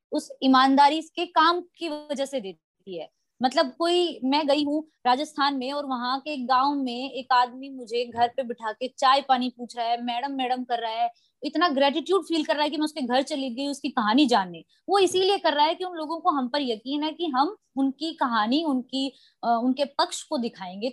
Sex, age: female, 20-39